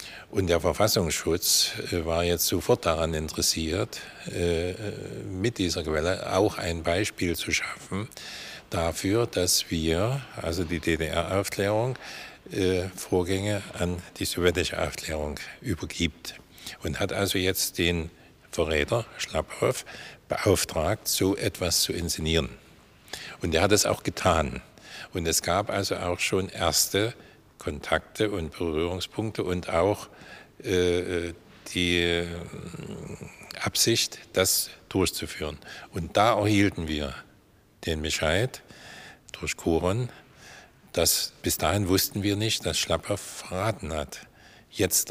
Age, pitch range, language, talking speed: 50-69, 85-100 Hz, German, 110 wpm